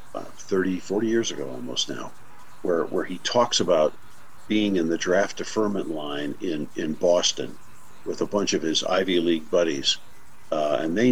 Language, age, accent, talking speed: English, 50-69, American, 175 wpm